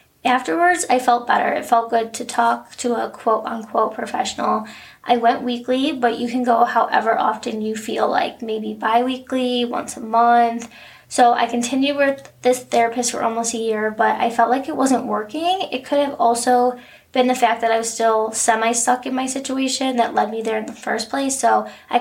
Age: 20-39